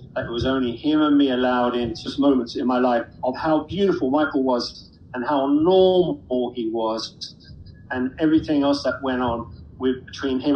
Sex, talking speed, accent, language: male, 190 wpm, British, English